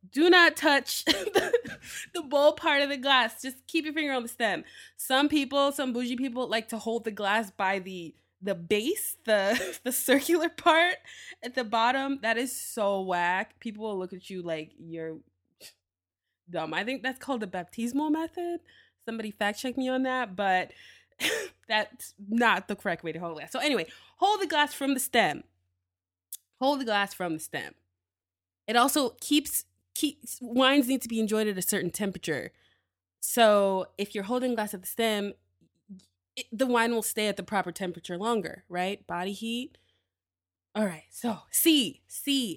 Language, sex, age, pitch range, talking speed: English, female, 20-39, 190-265 Hz, 175 wpm